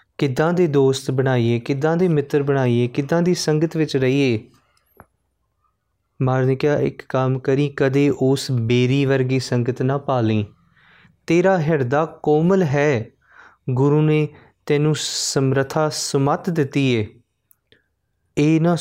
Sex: male